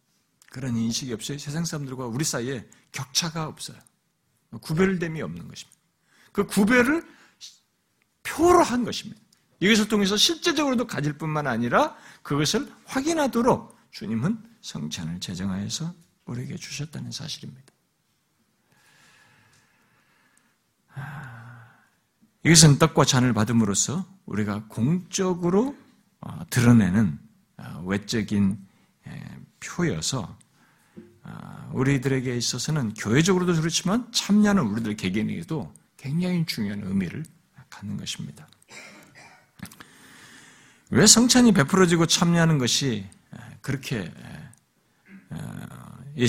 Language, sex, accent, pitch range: Korean, male, native, 125-195 Hz